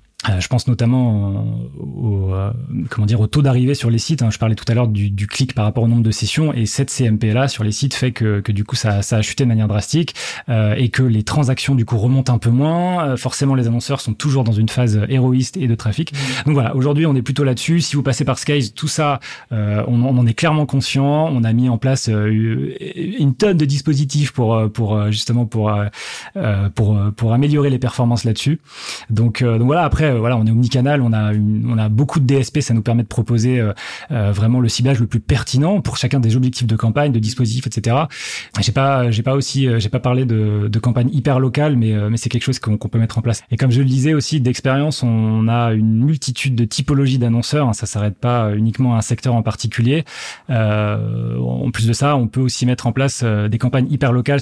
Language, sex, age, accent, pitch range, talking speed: French, male, 30-49, French, 110-135 Hz, 230 wpm